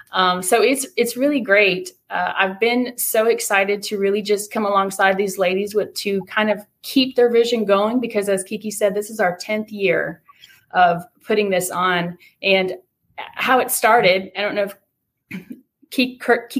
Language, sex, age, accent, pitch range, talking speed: English, female, 30-49, American, 185-215 Hz, 175 wpm